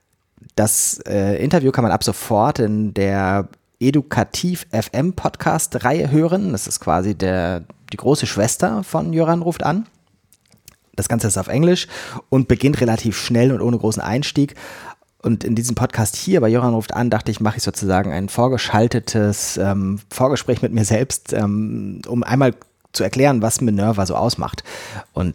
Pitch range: 100-130 Hz